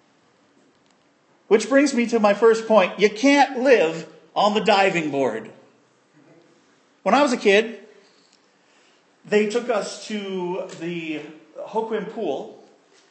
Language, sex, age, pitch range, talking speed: English, male, 40-59, 170-240 Hz, 120 wpm